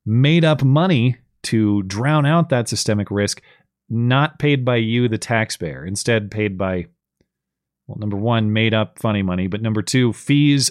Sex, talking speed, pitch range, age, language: male, 155 wpm, 105-140 Hz, 30-49, English